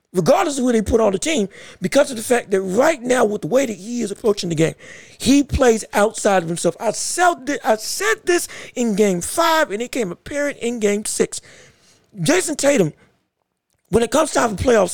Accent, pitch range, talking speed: American, 220-295 Hz, 210 wpm